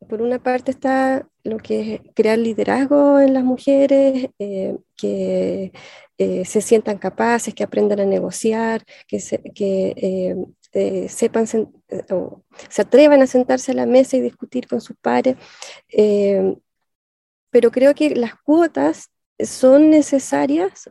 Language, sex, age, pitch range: Spanish, female, 20-39, 205-260 Hz